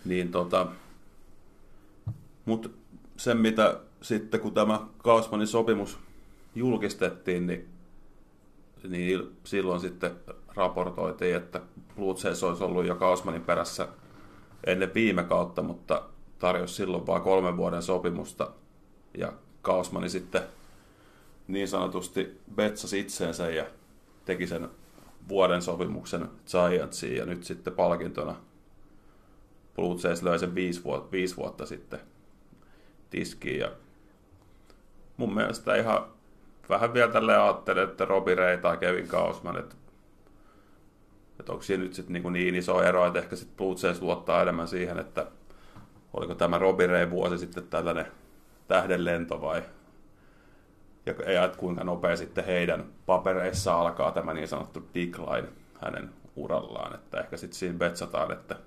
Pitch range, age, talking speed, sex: 90-100 Hz, 30-49, 125 wpm, male